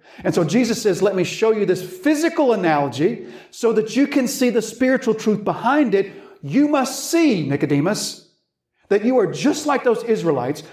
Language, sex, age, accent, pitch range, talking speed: English, male, 50-69, American, 150-220 Hz, 180 wpm